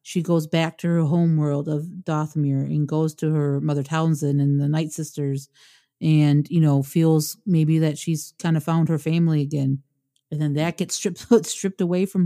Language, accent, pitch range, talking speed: English, American, 150-175 Hz, 195 wpm